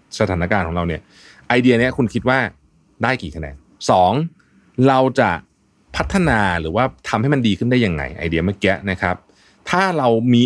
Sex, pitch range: male, 90-125 Hz